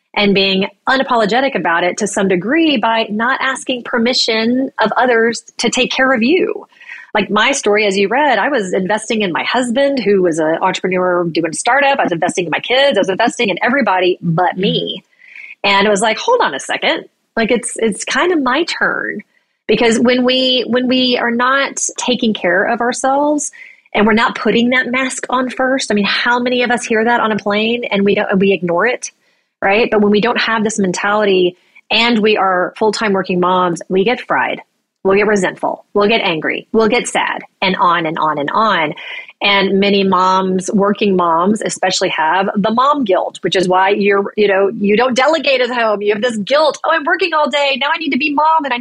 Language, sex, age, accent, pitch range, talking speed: English, female, 30-49, American, 200-255 Hz, 215 wpm